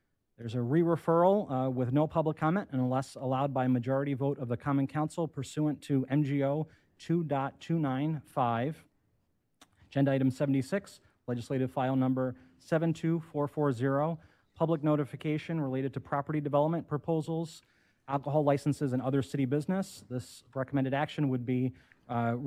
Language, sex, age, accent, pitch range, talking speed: English, male, 30-49, American, 130-150 Hz, 125 wpm